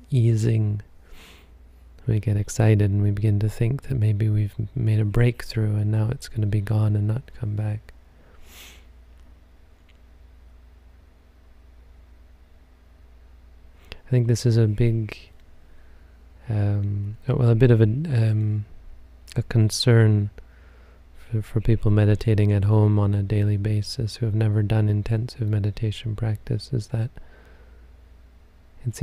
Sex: male